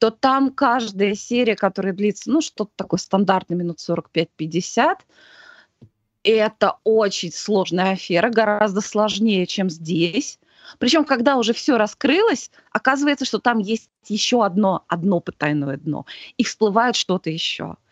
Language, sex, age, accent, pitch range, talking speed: Russian, female, 20-39, native, 175-240 Hz, 125 wpm